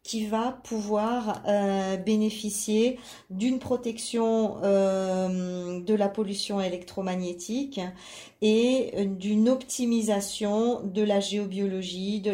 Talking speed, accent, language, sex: 90 wpm, French, French, female